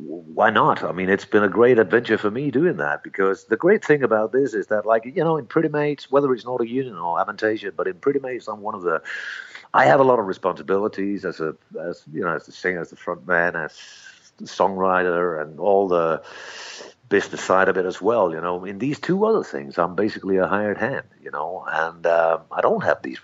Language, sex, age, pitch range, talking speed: English, male, 50-69, 95-135 Hz, 240 wpm